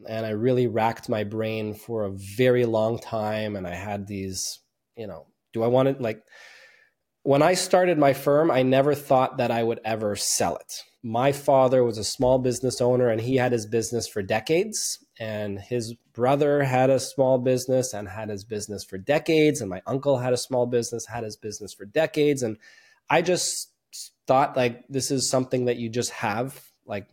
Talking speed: 195 wpm